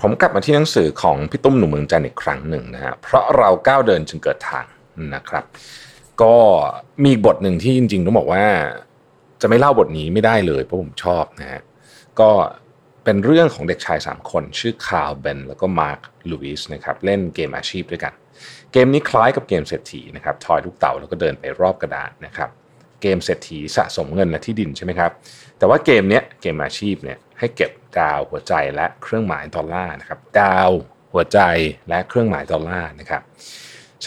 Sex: male